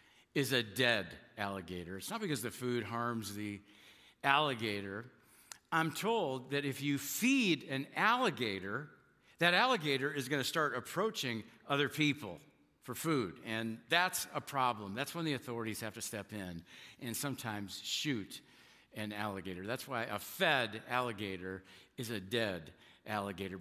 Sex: male